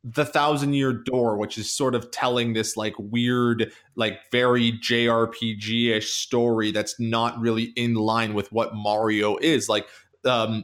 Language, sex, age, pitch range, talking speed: English, male, 20-39, 120-150 Hz, 160 wpm